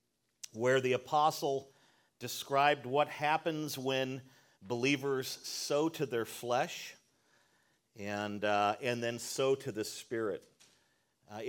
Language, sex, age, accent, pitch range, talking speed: English, male, 40-59, American, 120-150 Hz, 110 wpm